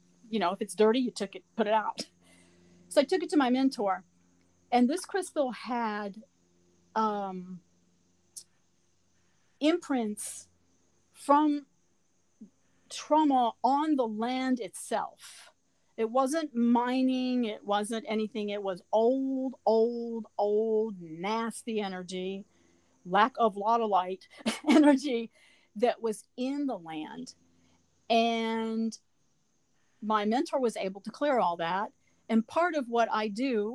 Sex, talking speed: female, 120 wpm